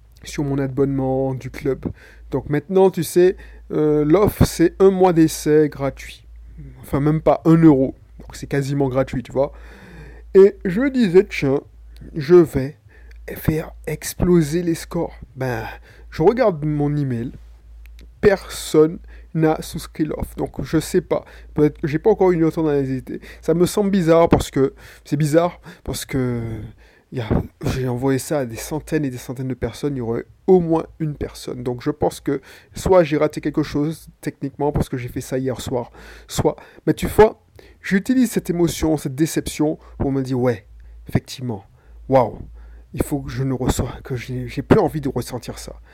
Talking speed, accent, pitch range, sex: 175 wpm, French, 130-165 Hz, male